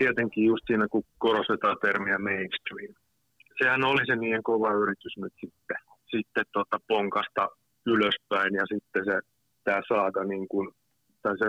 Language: Finnish